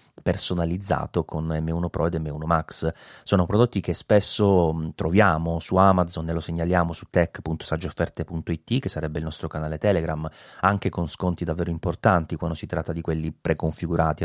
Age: 30-49